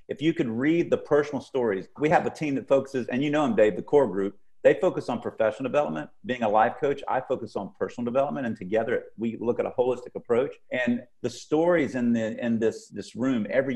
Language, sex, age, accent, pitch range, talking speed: English, male, 50-69, American, 115-170 Hz, 230 wpm